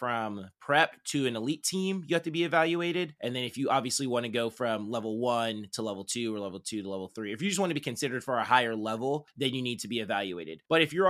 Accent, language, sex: American, English, male